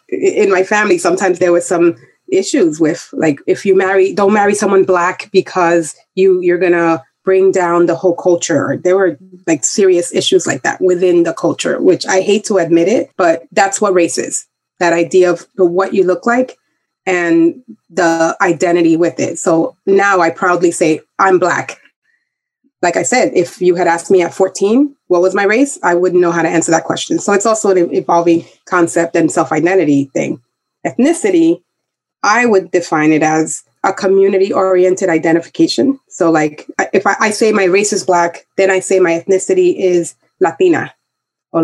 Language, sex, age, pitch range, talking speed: English, female, 30-49, 170-200 Hz, 180 wpm